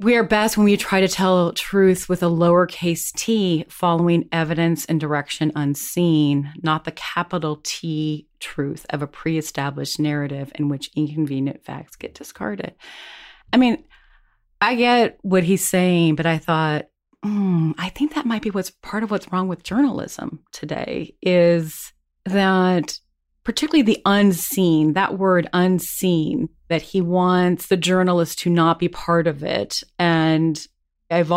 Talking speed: 150 wpm